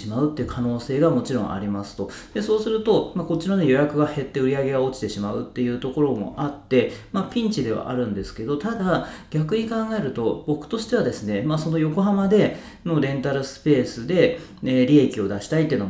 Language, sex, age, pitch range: Japanese, male, 30-49, 115-180 Hz